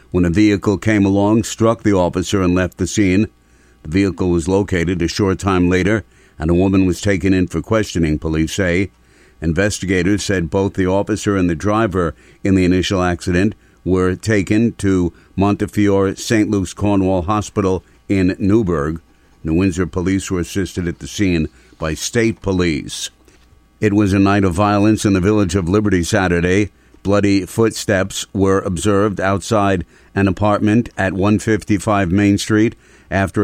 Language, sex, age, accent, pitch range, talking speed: English, male, 50-69, American, 90-105 Hz, 155 wpm